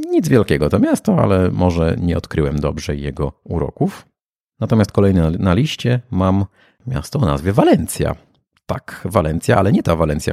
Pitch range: 80-105 Hz